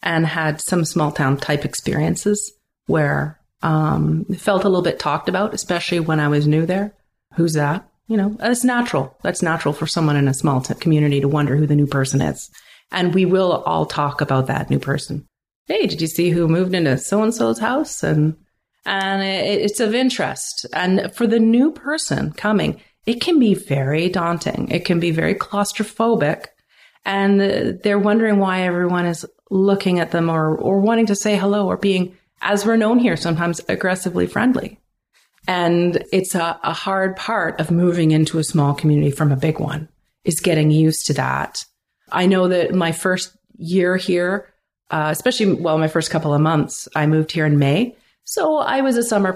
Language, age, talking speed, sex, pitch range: English, 40-59, 185 wpm, female, 155-200 Hz